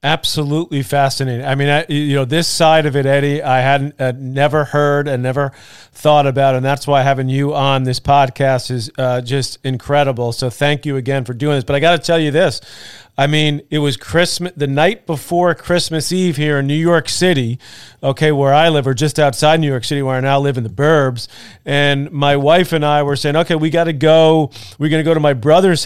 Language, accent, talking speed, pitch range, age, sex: English, American, 225 wpm, 135-165 Hz, 40-59, male